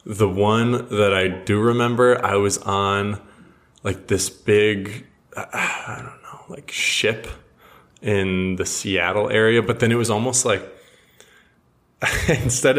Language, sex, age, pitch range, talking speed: English, male, 20-39, 95-110 Hz, 135 wpm